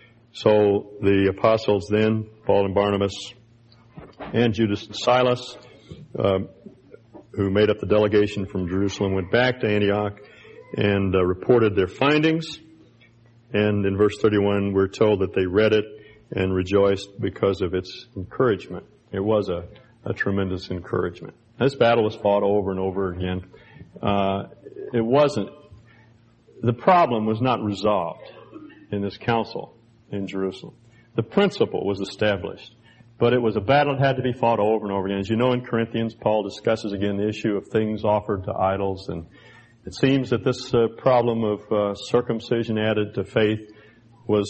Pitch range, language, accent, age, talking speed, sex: 100-120 Hz, English, American, 50-69, 160 wpm, male